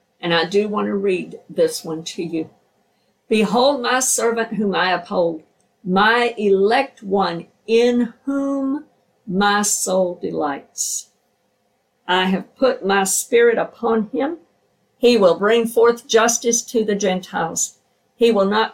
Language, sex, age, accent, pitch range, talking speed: English, female, 50-69, American, 185-235 Hz, 135 wpm